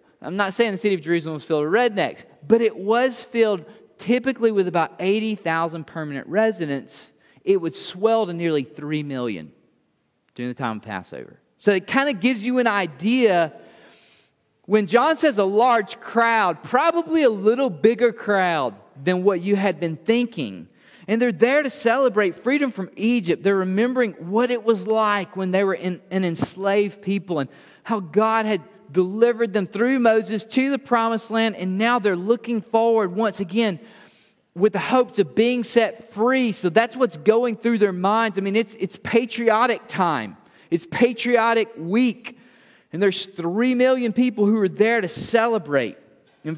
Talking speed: 170 wpm